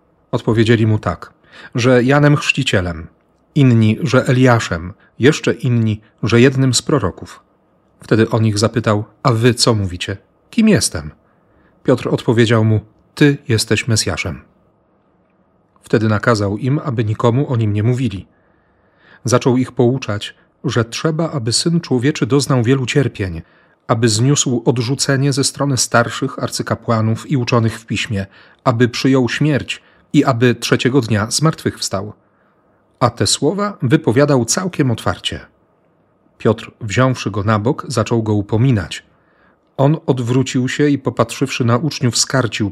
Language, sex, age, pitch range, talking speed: Polish, male, 40-59, 110-135 Hz, 130 wpm